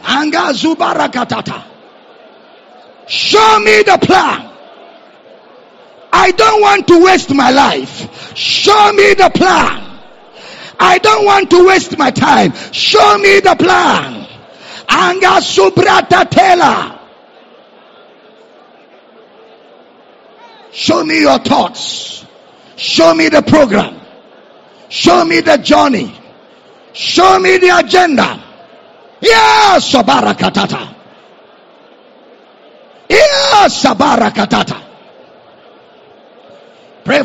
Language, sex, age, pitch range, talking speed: English, male, 50-69, 305-395 Hz, 75 wpm